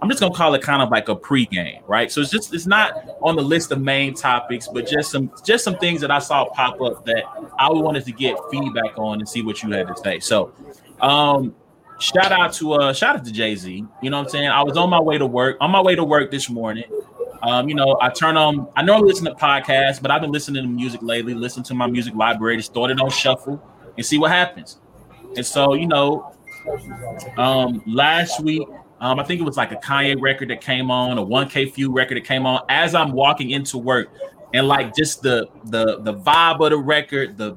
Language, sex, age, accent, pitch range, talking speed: English, male, 20-39, American, 125-160 Hz, 240 wpm